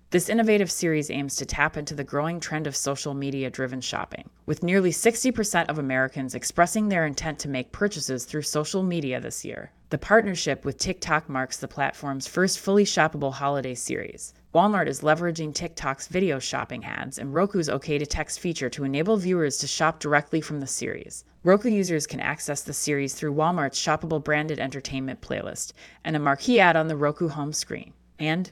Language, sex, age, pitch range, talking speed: English, female, 30-49, 135-170 Hz, 180 wpm